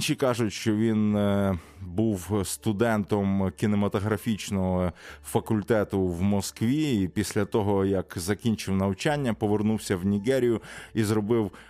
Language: Ukrainian